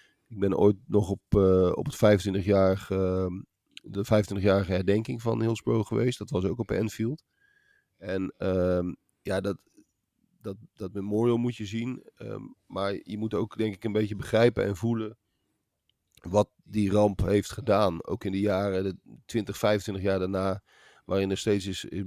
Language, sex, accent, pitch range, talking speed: Dutch, male, Dutch, 95-105 Hz, 170 wpm